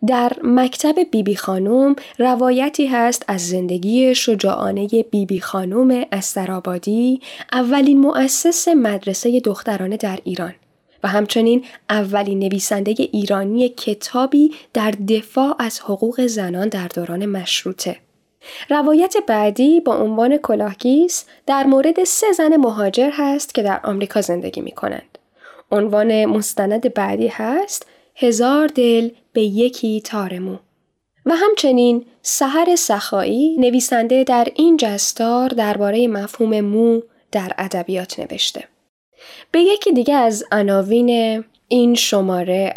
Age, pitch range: 10-29, 200-255 Hz